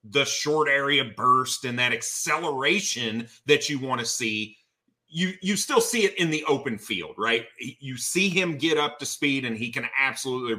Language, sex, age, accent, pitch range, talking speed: English, male, 30-49, American, 120-175 Hz, 185 wpm